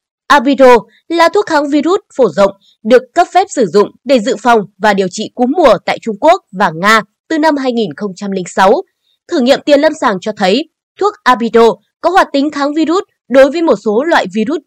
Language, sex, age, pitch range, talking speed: Vietnamese, female, 20-39, 220-320 Hz, 195 wpm